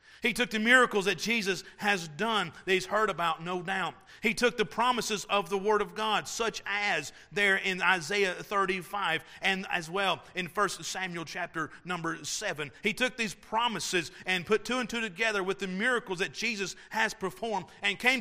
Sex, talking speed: male, 190 wpm